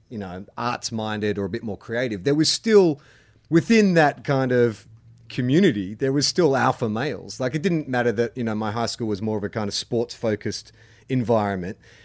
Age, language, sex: 30-49, English, male